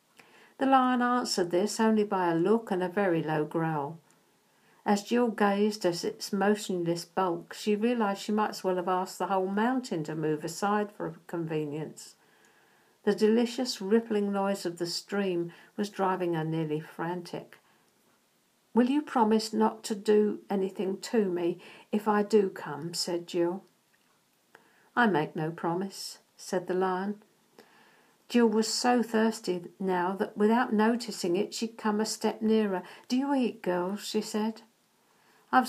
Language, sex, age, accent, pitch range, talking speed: English, female, 60-79, British, 180-225 Hz, 155 wpm